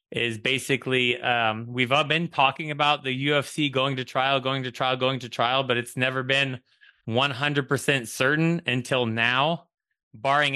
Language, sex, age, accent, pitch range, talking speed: English, male, 20-39, American, 120-140 Hz, 160 wpm